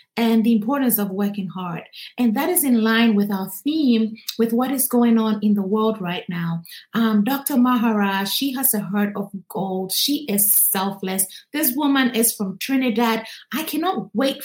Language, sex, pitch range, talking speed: English, female, 215-275 Hz, 185 wpm